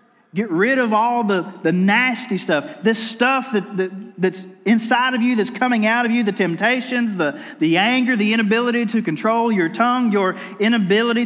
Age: 40-59